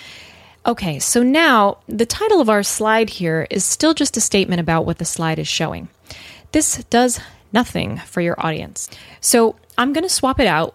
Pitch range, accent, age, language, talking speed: 170-225 Hz, American, 20-39, English, 180 wpm